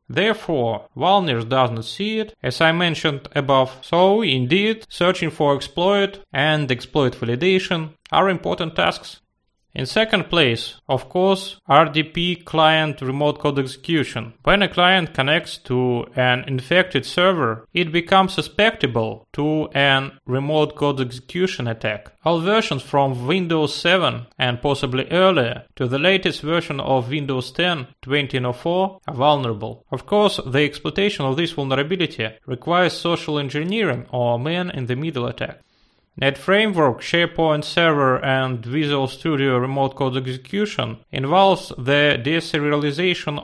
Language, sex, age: English, male, 30-49